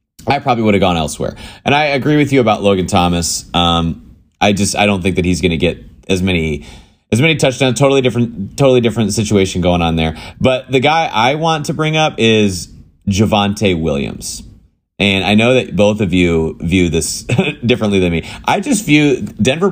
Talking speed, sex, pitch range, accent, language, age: 200 wpm, male, 90-115 Hz, American, English, 30-49